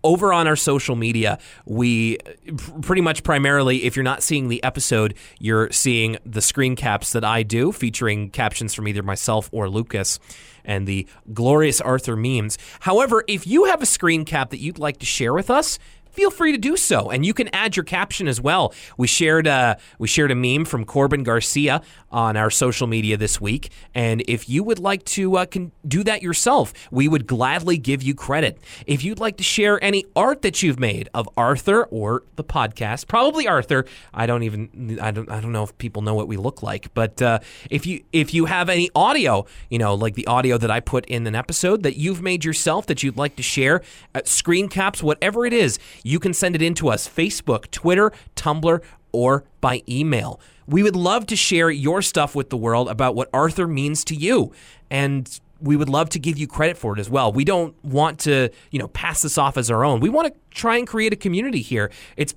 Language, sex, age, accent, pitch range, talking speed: English, male, 30-49, American, 115-170 Hz, 215 wpm